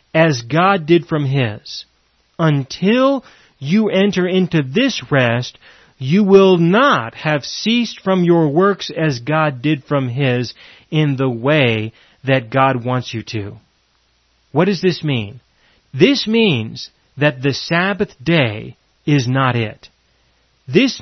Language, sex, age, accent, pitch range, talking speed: English, male, 30-49, American, 135-205 Hz, 130 wpm